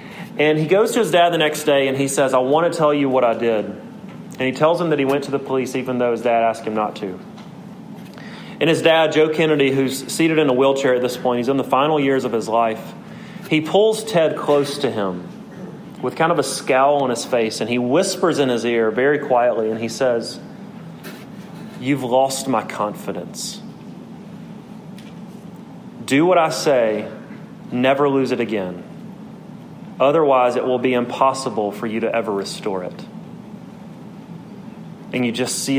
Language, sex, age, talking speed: English, male, 30-49, 185 wpm